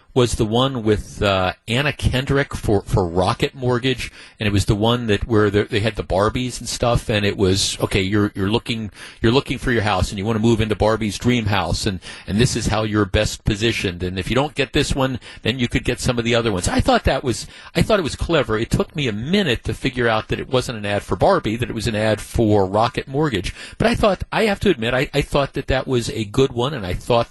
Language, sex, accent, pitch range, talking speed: English, male, American, 105-130 Hz, 265 wpm